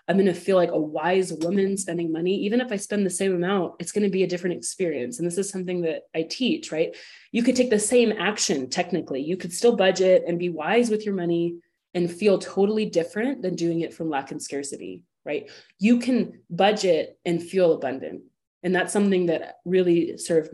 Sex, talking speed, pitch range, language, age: female, 215 wpm, 170-200 Hz, English, 20-39